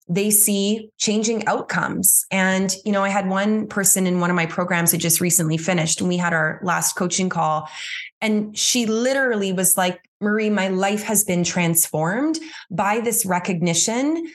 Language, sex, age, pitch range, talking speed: English, female, 20-39, 185-235 Hz, 170 wpm